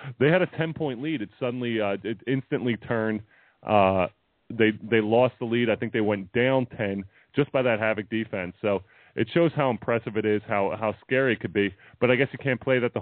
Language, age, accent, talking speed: English, 30-49, American, 225 wpm